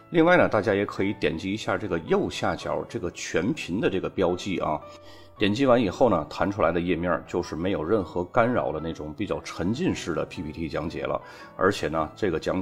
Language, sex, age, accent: Chinese, male, 30-49, native